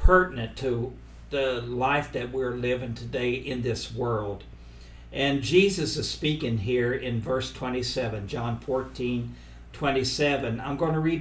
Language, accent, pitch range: English, American, 115-145 Hz